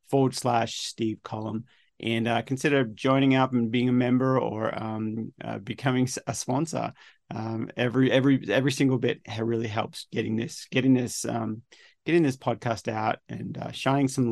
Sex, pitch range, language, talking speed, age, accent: male, 115-130 Hz, English, 170 wpm, 30-49, Australian